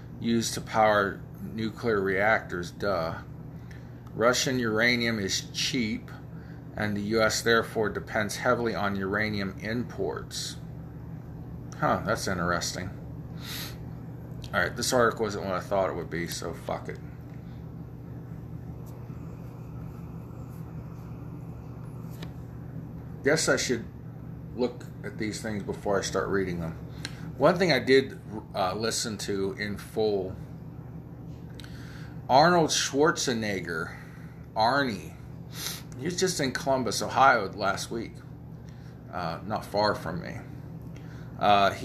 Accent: American